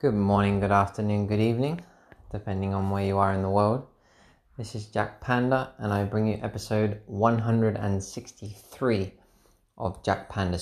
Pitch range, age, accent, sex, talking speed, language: 95-110 Hz, 20-39, British, male, 155 wpm, English